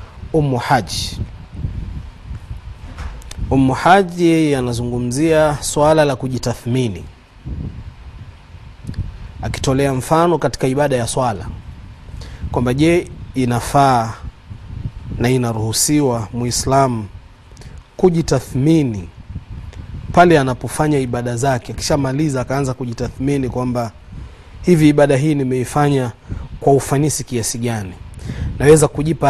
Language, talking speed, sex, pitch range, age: Swahili, 80 wpm, male, 100-150 Hz, 30-49